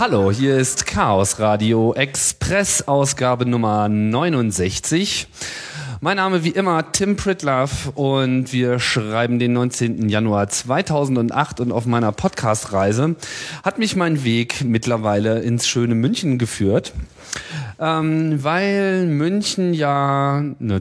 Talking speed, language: 115 wpm, German